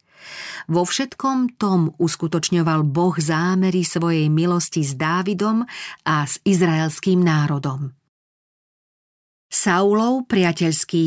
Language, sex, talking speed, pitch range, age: Slovak, female, 85 wpm, 165-210 Hz, 40-59